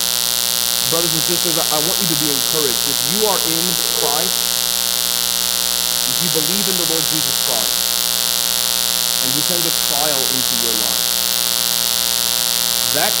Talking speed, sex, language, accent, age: 140 wpm, male, English, American, 40-59